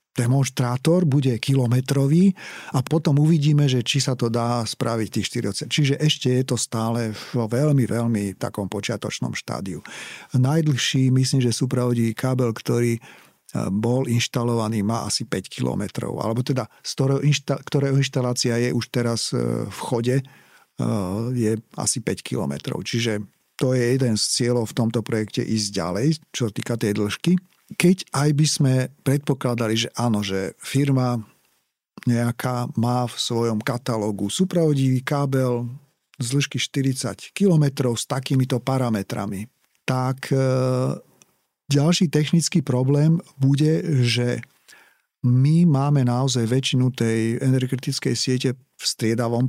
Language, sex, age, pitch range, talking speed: Slovak, male, 50-69, 115-140 Hz, 125 wpm